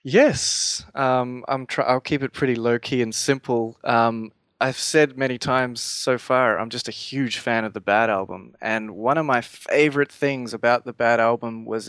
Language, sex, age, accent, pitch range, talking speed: English, male, 20-39, Australian, 115-135 Hz, 180 wpm